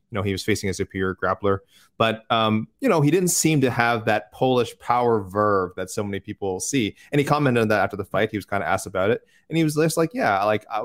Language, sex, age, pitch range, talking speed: English, male, 20-39, 105-130 Hz, 275 wpm